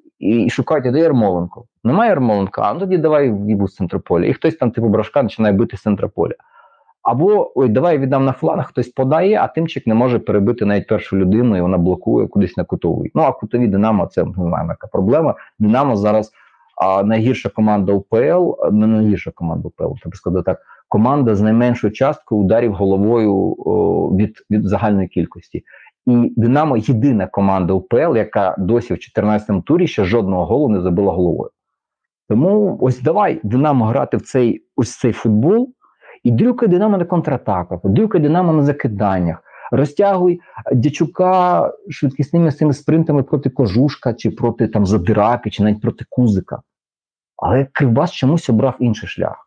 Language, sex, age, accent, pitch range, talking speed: Ukrainian, male, 30-49, native, 105-145 Hz, 160 wpm